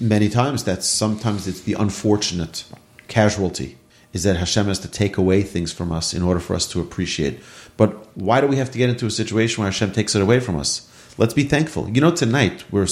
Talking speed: 225 wpm